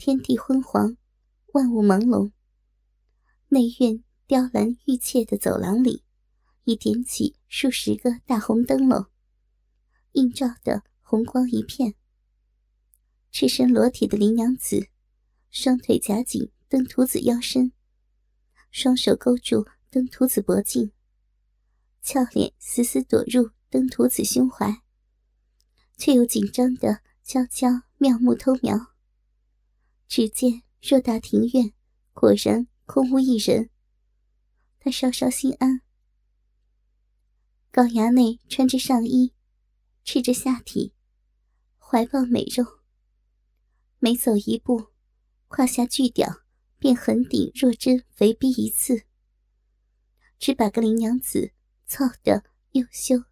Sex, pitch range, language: male, 220-260 Hz, Chinese